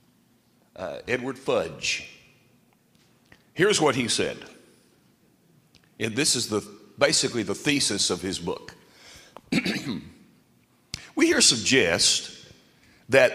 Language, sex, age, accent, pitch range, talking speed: English, male, 60-79, American, 115-185 Hz, 95 wpm